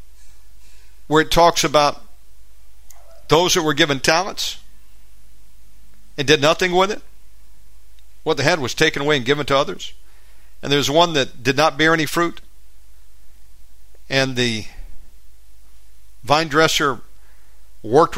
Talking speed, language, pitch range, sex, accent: 125 wpm, English, 100-155 Hz, male, American